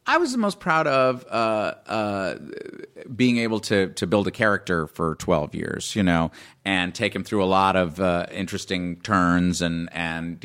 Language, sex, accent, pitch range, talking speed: English, male, American, 85-100 Hz, 185 wpm